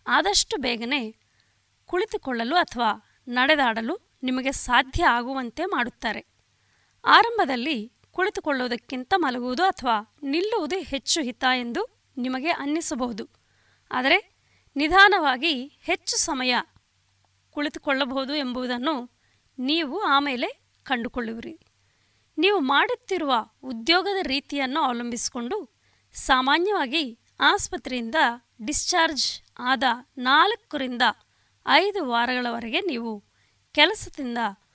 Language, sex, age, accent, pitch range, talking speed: Kannada, female, 20-39, native, 235-330 Hz, 75 wpm